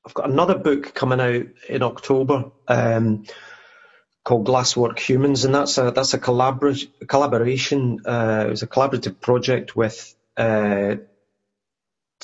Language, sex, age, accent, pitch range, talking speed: English, male, 30-49, British, 110-130 Hz, 130 wpm